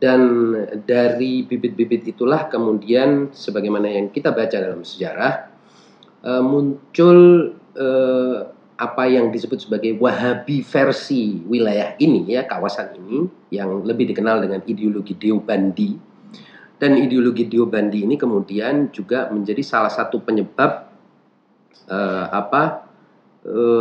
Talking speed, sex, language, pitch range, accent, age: 105 wpm, male, Indonesian, 110-140 Hz, native, 40-59